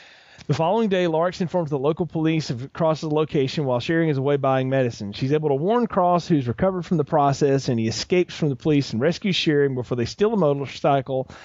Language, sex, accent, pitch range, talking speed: English, male, American, 140-185 Hz, 220 wpm